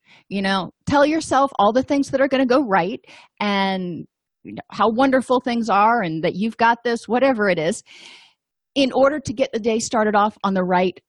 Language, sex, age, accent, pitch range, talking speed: English, female, 30-49, American, 205-265 Hz, 200 wpm